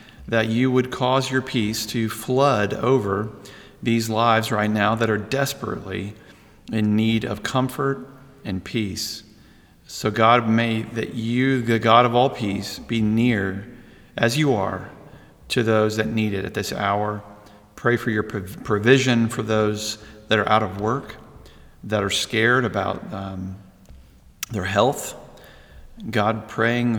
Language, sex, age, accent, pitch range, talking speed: English, male, 40-59, American, 105-125 Hz, 145 wpm